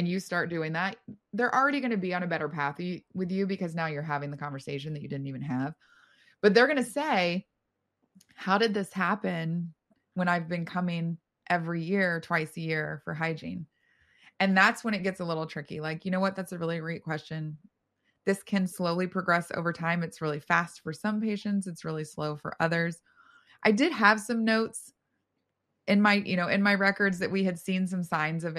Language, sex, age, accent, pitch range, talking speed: English, female, 20-39, American, 165-205 Hz, 210 wpm